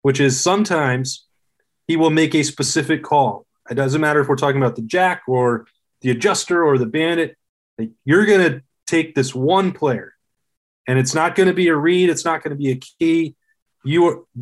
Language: English